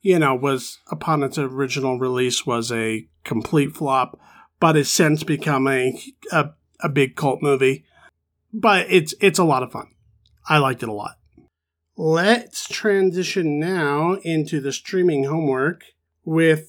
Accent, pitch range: American, 135-165 Hz